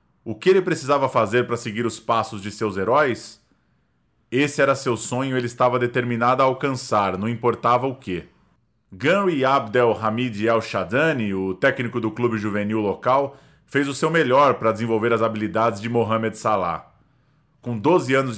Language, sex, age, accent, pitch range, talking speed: Portuguese, male, 20-39, Brazilian, 105-140 Hz, 165 wpm